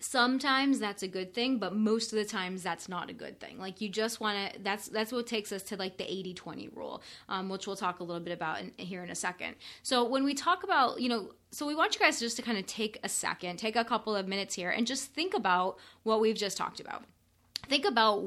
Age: 20-39